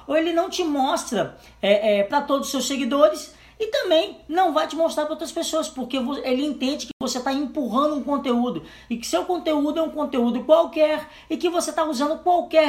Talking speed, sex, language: 200 wpm, female, Portuguese